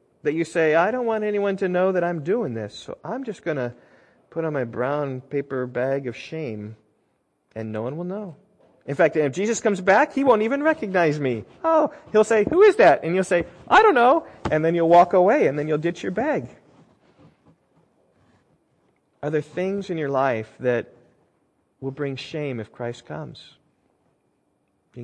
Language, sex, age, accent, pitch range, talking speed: English, male, 30-49, American, 130-190 Hz, 190 wpm